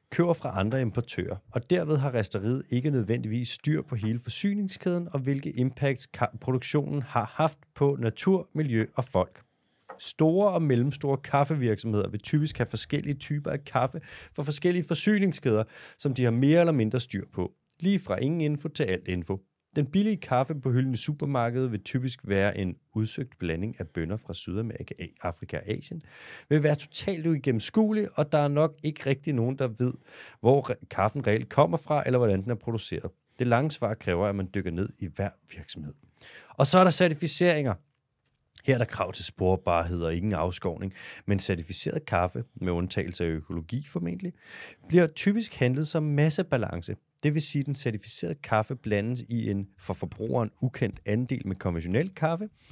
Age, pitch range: 30-49, 105-155 Hz